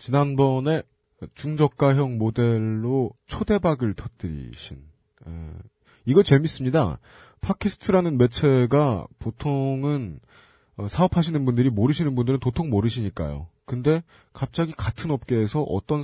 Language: Korean